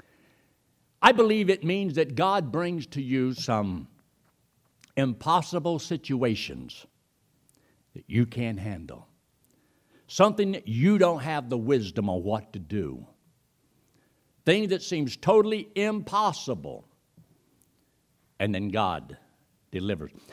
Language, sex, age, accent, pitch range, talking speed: English, male, 60-79, American, 105-150 Hz, 105 wpm